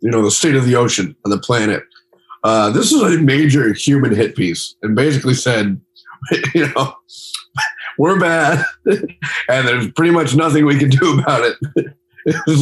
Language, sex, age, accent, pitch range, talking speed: English, male, 50-69, American, 110-155 Hz, 170 wpm